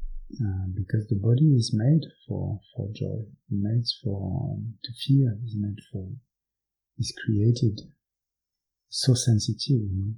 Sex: male